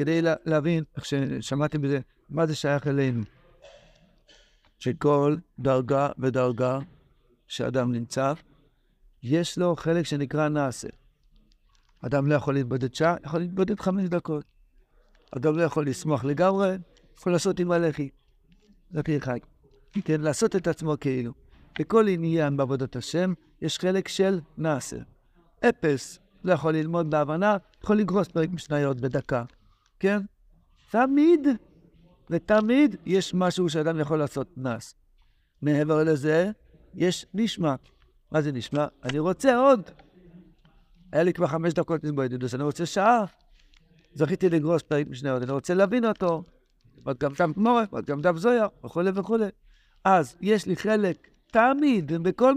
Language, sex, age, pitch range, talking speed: Hebrew, male, 60-79, 145-185 Hz, 130 wpm